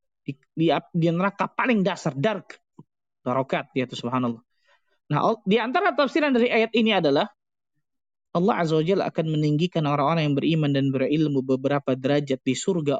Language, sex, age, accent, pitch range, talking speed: Indonesian, male, 20-39, native, 135-225 Hz, 145 wpm